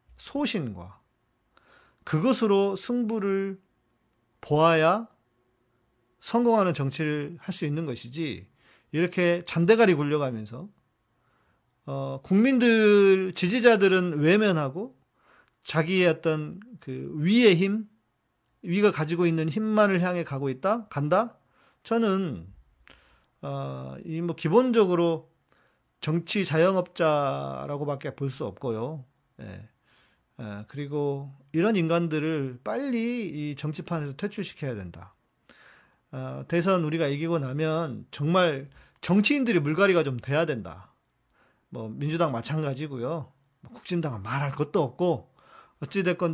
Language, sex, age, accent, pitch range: Korean, male, 40-59, native, 130-185 Hz